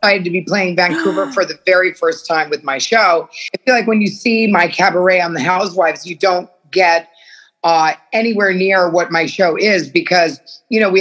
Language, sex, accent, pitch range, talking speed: English, female, American, 170-205 Hz, 205 wpm